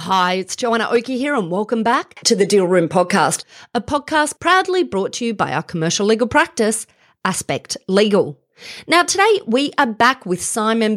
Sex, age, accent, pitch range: female, 40-59, Australian, 180-255 Hz